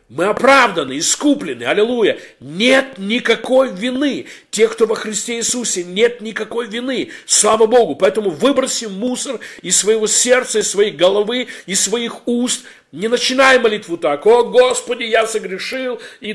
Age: 50-69